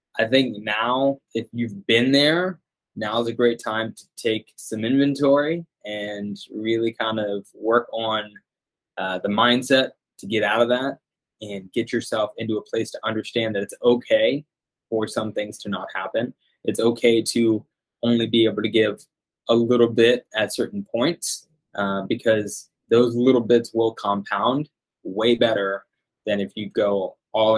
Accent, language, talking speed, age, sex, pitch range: American, English, 160 wpm, 20-39, male, 105-125 Hz